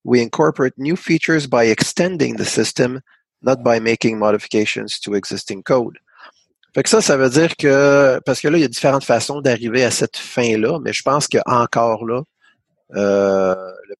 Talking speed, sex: 180 wpm, male